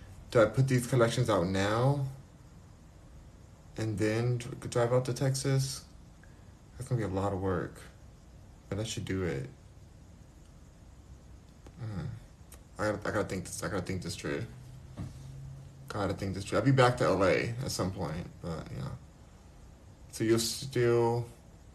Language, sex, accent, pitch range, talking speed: English, male, American, 90-115 Hz, 150 wpm